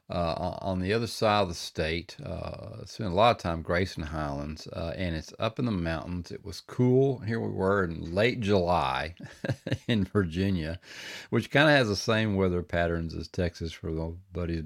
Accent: American